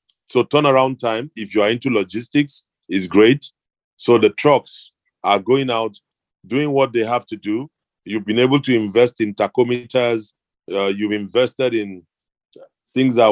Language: English